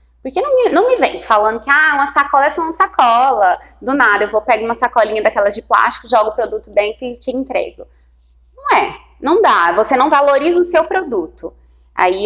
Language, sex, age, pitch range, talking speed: Portuguese, female, 20-39, 195-275 Hz, 215 wpm